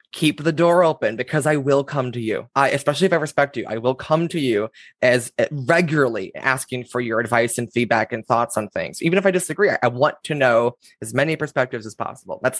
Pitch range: 125-155 Hz